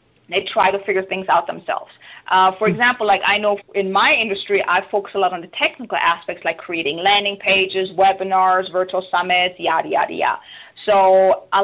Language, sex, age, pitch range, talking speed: English, female, 20-39, 195-235 Hz, 185 wpm